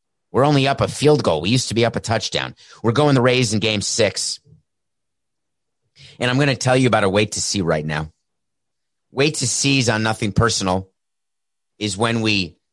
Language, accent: English, American